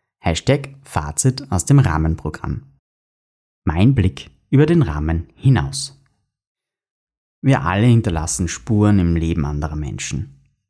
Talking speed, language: 105 wpm, German